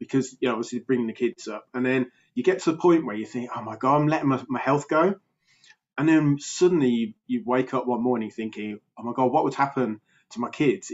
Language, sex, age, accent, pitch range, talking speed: English, male, 20-39, British, 120-140 Hz, 250 wpm